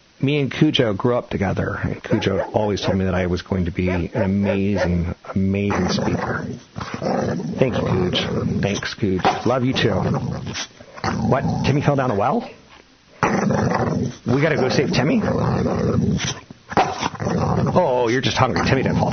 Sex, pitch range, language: male, 90-110 Hz, English